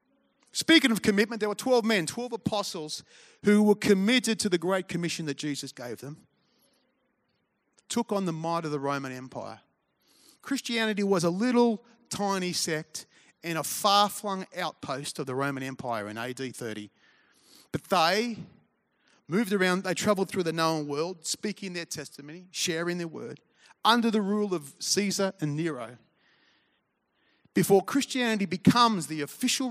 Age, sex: 30-49, male